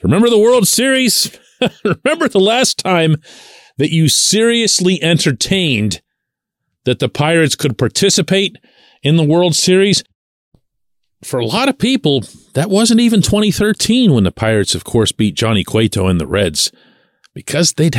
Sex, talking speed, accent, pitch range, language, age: male, 145 wpm, American, 125-185 Hz, English, 40-59